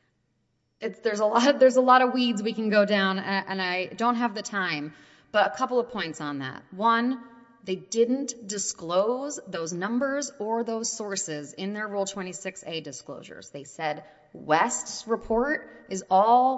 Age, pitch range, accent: 30-49, 190-245 Hz, American